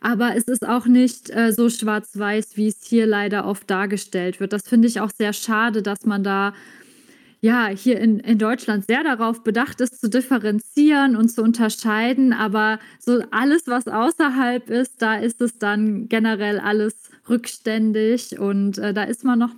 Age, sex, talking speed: 20-39, female, 175 wpm